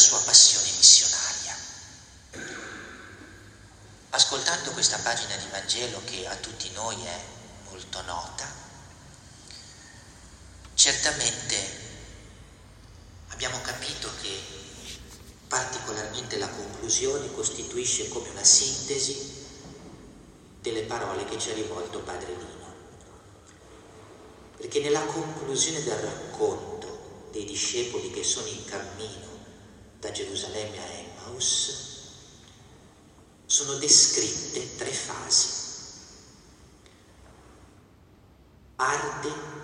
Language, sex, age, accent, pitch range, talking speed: Italian, male, 40-59, native, 100-150 Hz, 80 wpm